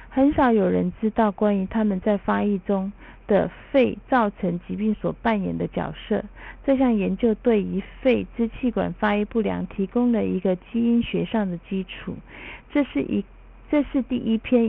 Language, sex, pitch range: Chinese, female, 185-230 Hz